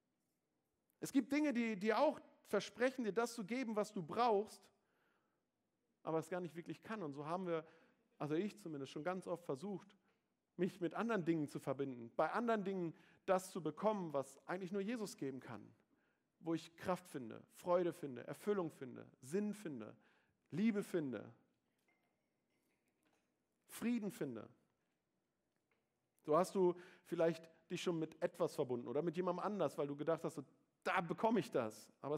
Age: 40-59